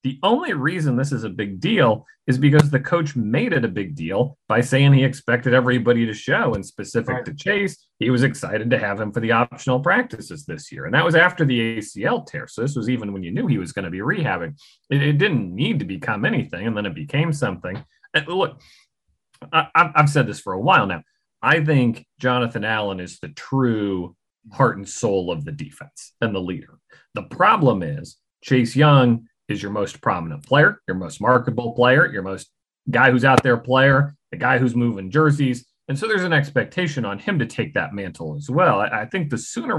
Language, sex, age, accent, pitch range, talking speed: English, male, 30-49, American, 110-145 Hz, 210 wpm